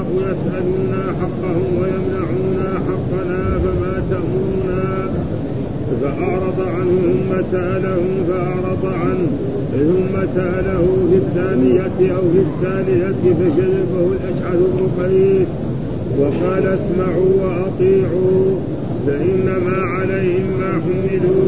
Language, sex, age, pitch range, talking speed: Arabic, male, 50-69, 180-190 Hz, 75 wpm